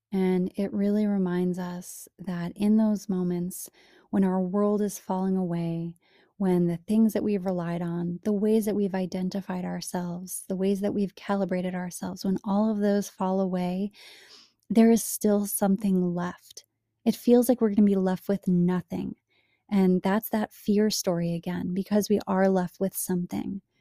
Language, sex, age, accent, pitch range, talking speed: English, female, 20-39, American, 180-205 Hz, 170 wpm